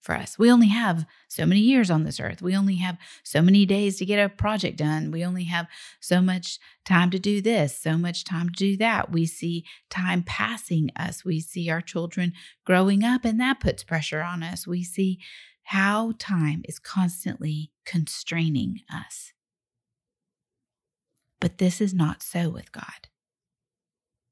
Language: English